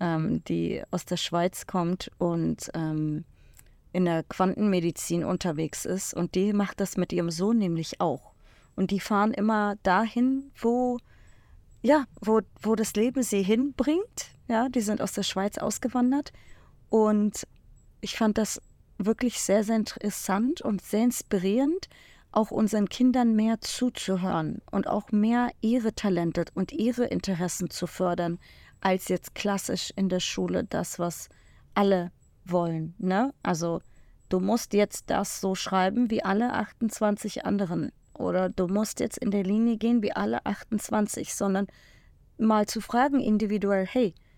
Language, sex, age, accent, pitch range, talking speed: German, female, 30-49, German, 185-230 Hz, 140 wpm